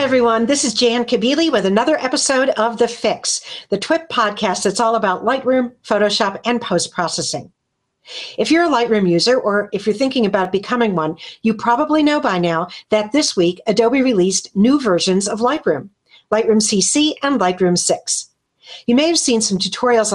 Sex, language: female, English